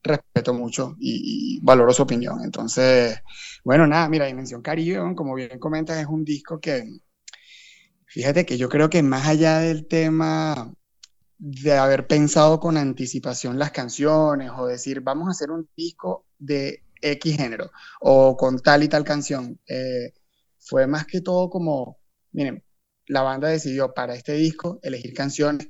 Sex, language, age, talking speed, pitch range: male, Spanish, 30-49, 160 wpm, 135-165 Hz